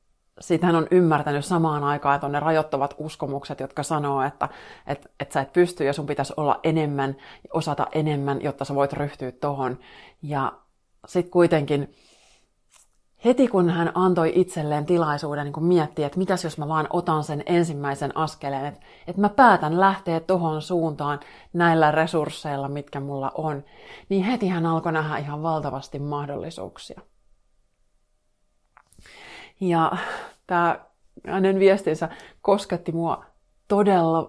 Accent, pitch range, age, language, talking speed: native, 145-175 Hz, 30-49, Finnish, 135 wpm